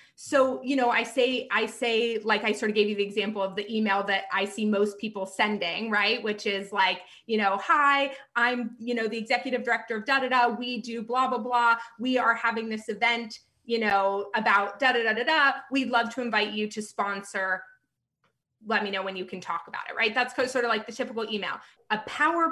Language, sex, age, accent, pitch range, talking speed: English, female, 20-39, American, 200-245 Hz, 210 wpm